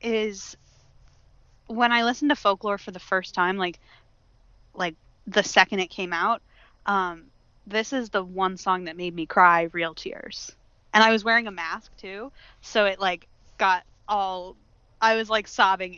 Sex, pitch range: female, 180-225 Hz